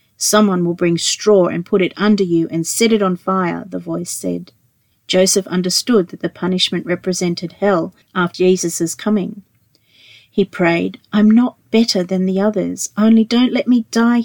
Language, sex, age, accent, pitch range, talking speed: English, female, 40-59, Australian, 170-210 Hz, 170 wpm